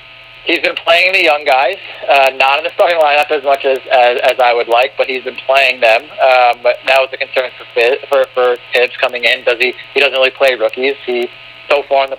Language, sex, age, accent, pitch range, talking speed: English, male, 40-59, American, 125-145 Hz, 245 wpm